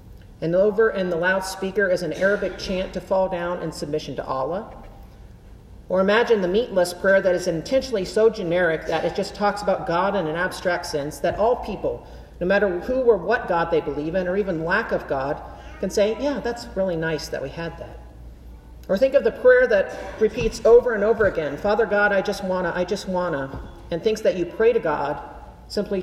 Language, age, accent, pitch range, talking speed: English, 40-59, American, 155-205 Hz, 205 wpm